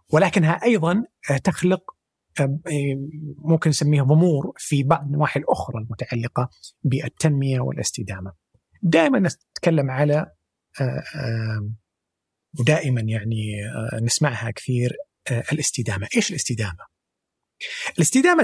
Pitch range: 120-160 Hz